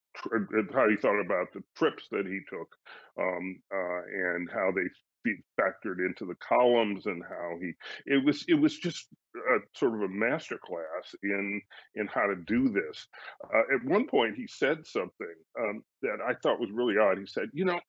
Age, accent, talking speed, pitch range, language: 40-59, American, 185 wpm, 115-195 Hz, English